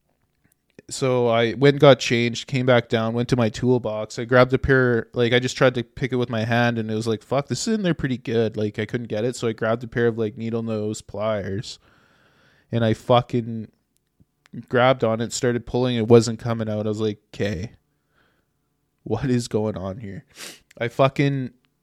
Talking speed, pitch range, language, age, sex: 210 wpm, 110-125 Hz, English, 20-39, male